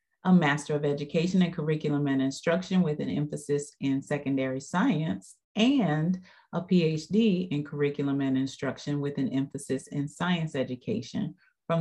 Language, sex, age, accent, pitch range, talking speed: English, female, 40-59, American, 145-185 Hz, 140 wpm